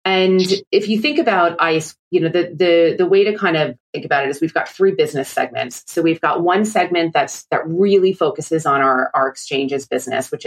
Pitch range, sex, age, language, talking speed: 155-210 Hz, female, 30-49, English, 225 wpm